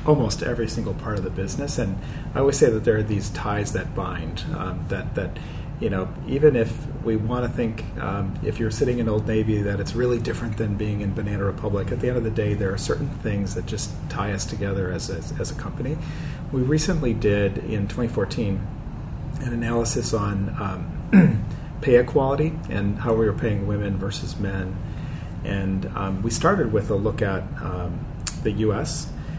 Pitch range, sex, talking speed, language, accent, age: 100-125 Hz, male, 195 wpm, English, American, 40-59